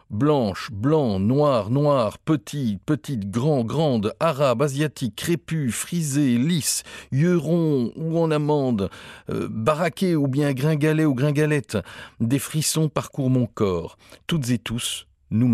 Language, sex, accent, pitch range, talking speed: French, male, French, 110-150 Hz, 130 wpm